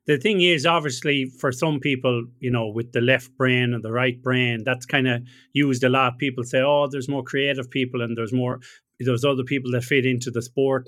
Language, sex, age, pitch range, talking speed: English, male, 30-49, 125-160 Hz, 225 wpm